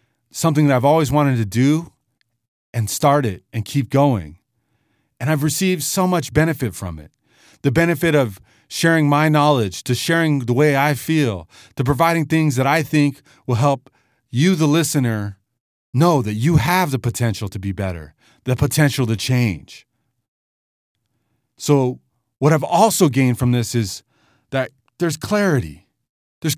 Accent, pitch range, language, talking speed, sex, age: American, 120-160 Hz, English, 155 wpm, male, 30-49